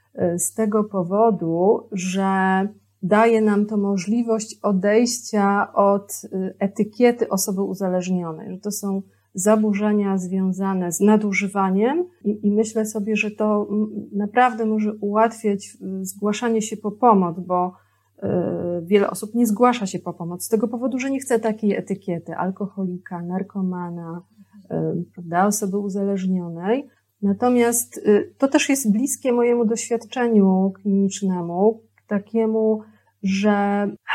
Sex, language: female, Polish